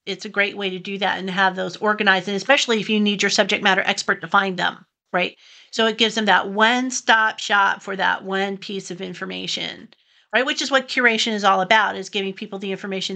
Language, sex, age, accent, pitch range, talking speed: English, female, 40-59, American, 190-220 Hz, 230 wpm